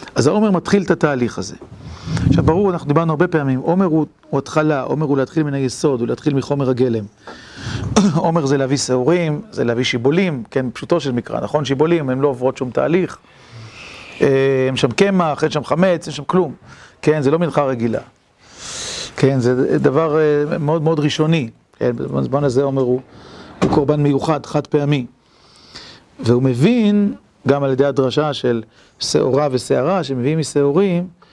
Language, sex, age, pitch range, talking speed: Hebrew, male, 40-59, 130-165 Hz, 165 wpm